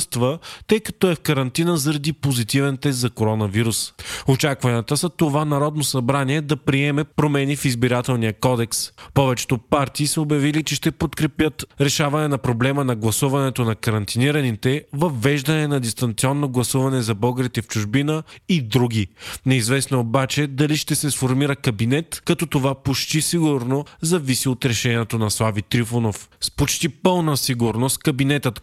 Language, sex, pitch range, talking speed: Bulgarian, male, 125-150 Hz, 145 wpm